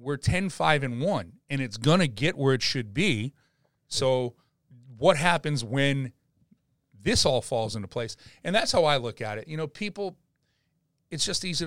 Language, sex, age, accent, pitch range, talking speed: English, male, 40-59, American, 120-170 Hz, 175 wpm